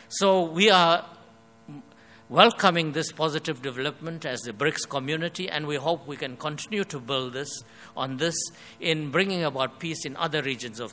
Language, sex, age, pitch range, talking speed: English, male, 60-79, 125-160 Hz, 165 wpm